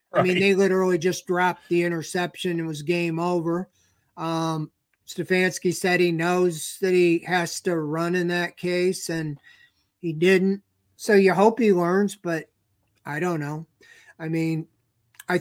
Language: English